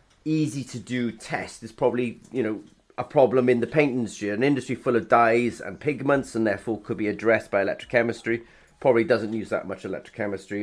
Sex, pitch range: male, 105-125 Hz